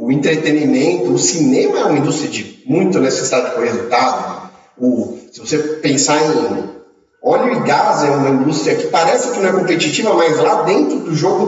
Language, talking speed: Portuguese, 170 wpm